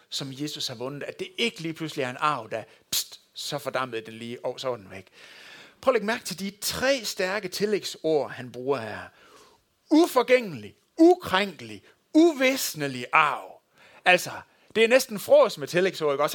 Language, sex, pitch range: Danish, male, 160-245 Hz